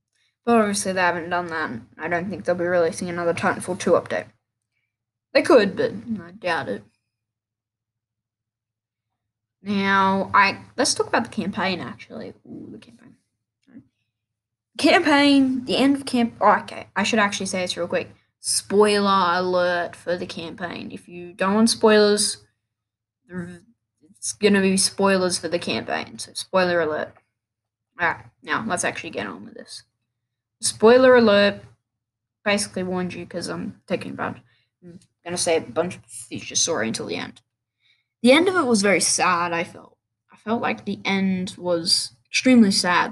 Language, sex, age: English, female, 10-29